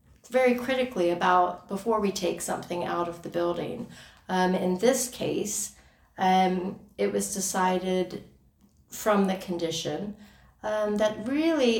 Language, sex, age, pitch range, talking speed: English, female, 30-49, 170-195 Hz, 125 wpm